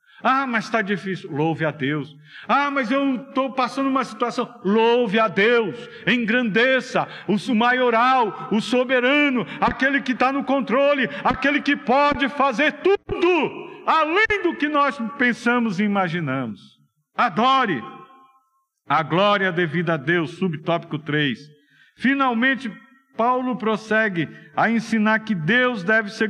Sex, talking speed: male, 130 wpm